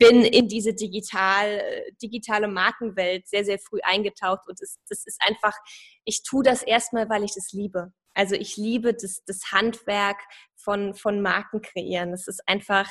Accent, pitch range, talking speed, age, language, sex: German, 200-235 Hz, 165 wpm, 20-39, German, female